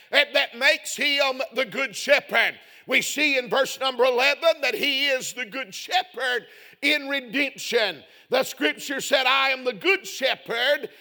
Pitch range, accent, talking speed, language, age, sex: 265-300 Hz, American, 155 wpm, English, 50-69, male